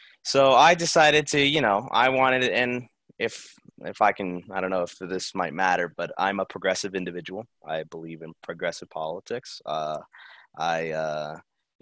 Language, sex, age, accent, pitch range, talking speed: English, male, 20-39, American, 95-135 Hz, 175 wpm